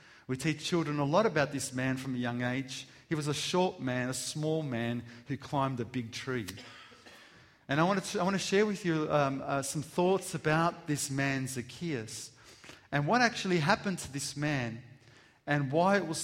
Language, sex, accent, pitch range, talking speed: English, male, Australian, 120-150 Hz, 195 wpm